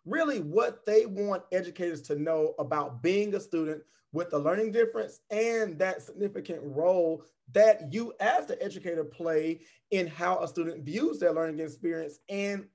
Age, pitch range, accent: 30-49, 165-200 Hz, American